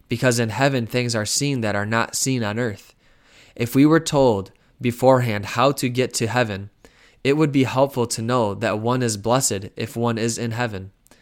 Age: 20-39